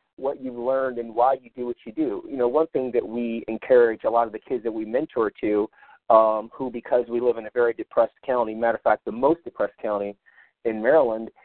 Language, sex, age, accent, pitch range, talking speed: English, male, 40-59, American, 115-155 Hz, 235 wpm